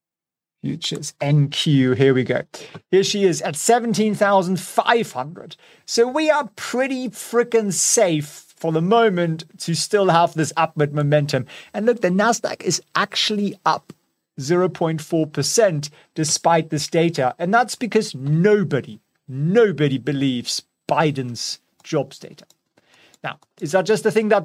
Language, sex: English, male